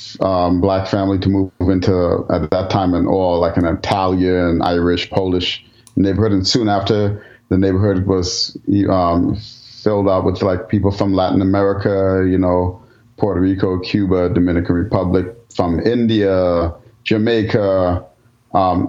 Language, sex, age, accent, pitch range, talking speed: English, male, 30-49, American, 90-105 Hz, 135 wpm